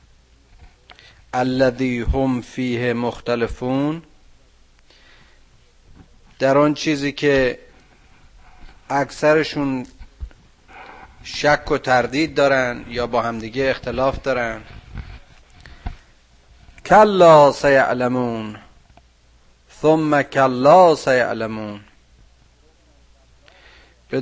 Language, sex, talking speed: Persian, male, 60 wpm